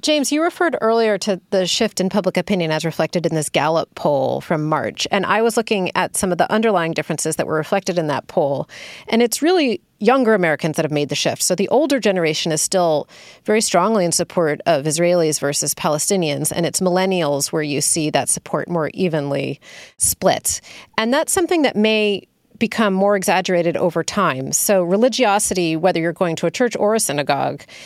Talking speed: 195 wpm